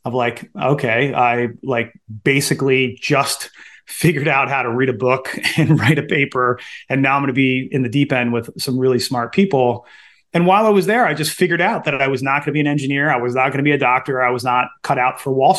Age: 30-49